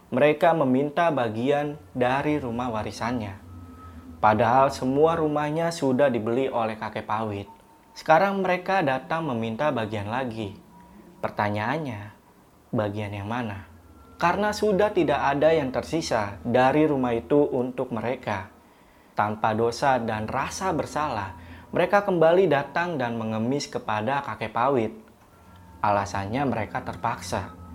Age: 20-39